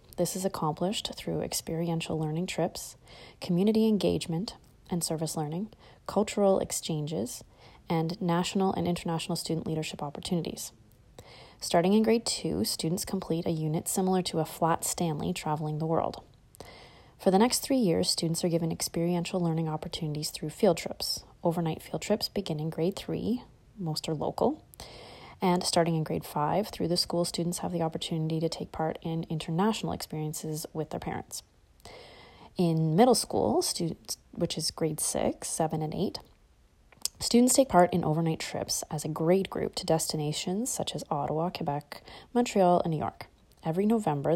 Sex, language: female, English